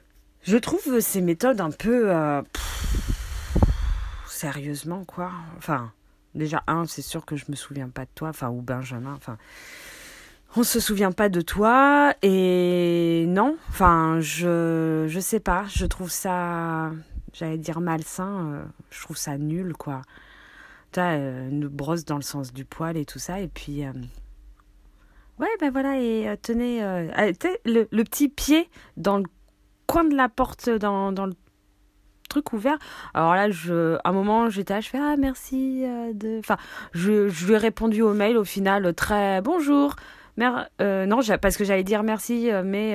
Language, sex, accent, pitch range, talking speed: French, female, French, 160-230 Hz, 170 wpm